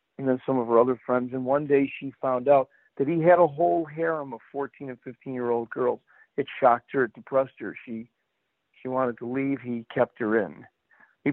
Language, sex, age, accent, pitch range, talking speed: English, male, 50-69, American, 120-140 Hz, 210 wpm